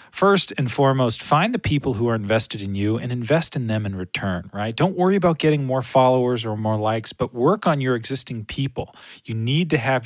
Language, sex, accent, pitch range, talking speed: English, male, American, 115-140 Hz, 220 wpm